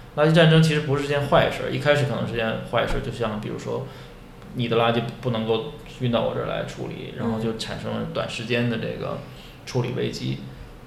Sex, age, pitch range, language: male, 20-39, 115-145 Hz, Chinese